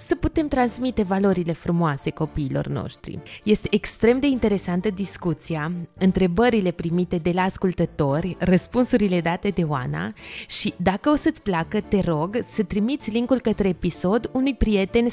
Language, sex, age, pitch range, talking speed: Romanian, female, 20-39, 175-235 Hz, 140 wpm